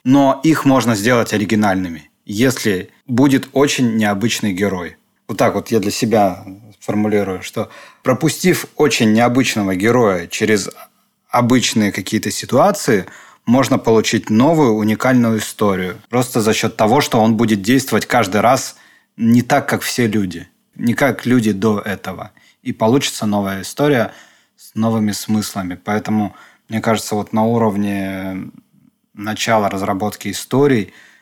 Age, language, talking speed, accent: 20-39, Russian, 130 wpm, native